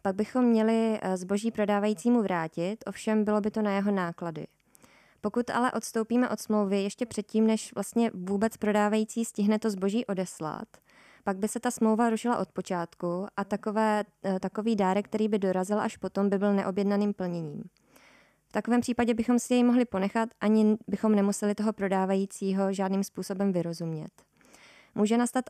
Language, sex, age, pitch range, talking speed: Czech, female, 20-39, 190-220 Hz, 155 wpm